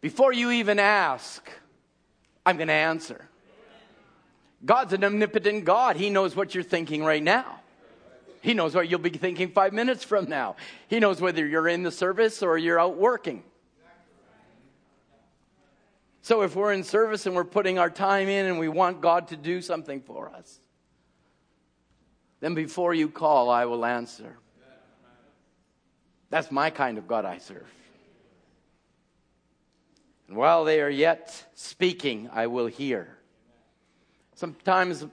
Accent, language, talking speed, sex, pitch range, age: American, English, 140 wpm, male, 145-185 Hz, 50-69